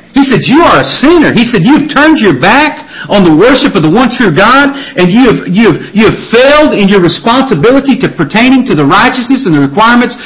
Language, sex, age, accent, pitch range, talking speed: English, male, 40-59, American, 170-255 Hz, 230 wpm